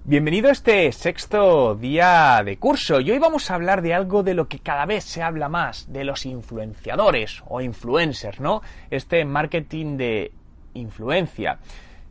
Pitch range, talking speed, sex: 120-195 Hz, 160 wpm, male